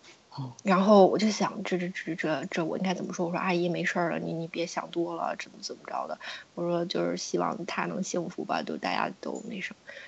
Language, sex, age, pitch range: Chinese, female, 20-39, 170-195 Hz